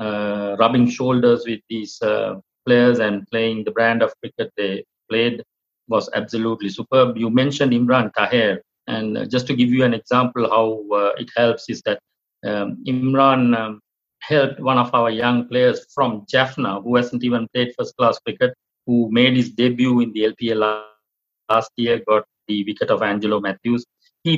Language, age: English, 50-69